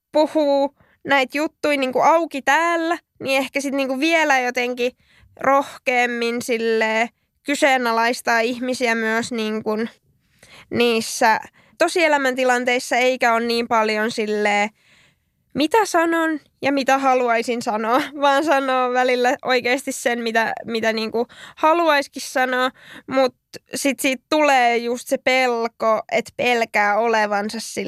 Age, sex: 10-29, female